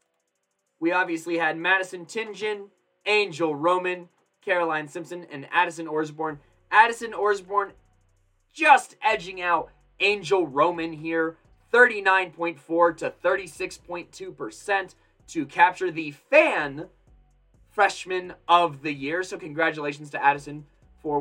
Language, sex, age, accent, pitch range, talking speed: English, male, 20-39, American, 125-175 Hz, 120 wpm